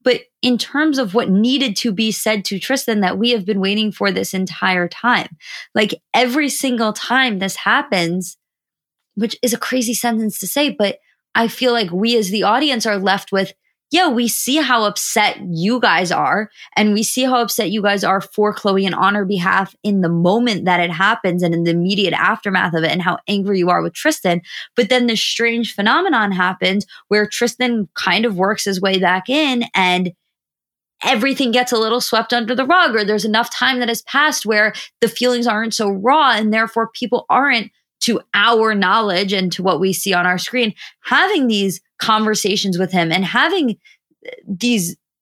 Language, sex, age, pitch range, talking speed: English, female, 20-39, 190-240 Hz, 195 wpm